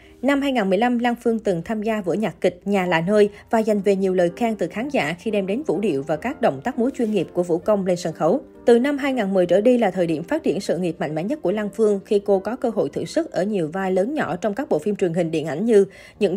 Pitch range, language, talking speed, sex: 185-240 Hz, Vietnamese, 295 wpm, female